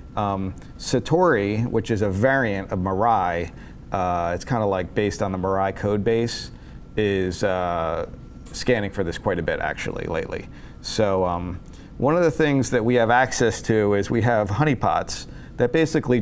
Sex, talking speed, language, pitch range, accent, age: male, 170 wpm, English, 95-120 Hz, American, 40-59